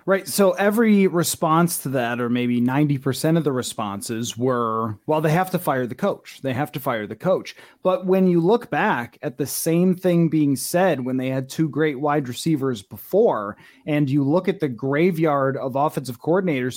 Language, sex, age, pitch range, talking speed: English, male, 30-49, 135-180 Hz, 195 wpm